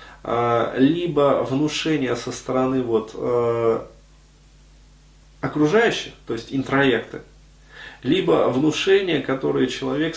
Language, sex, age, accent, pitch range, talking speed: Russian, male, 30-49, native, 120-155 Hz, 85 wpm